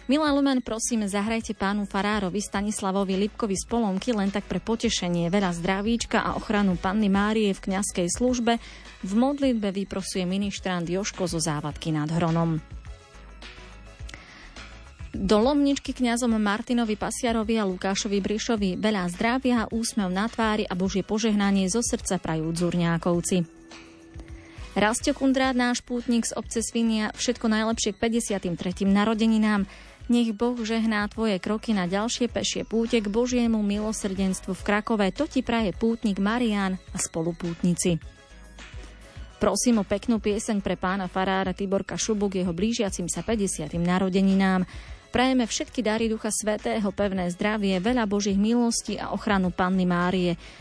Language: Slovak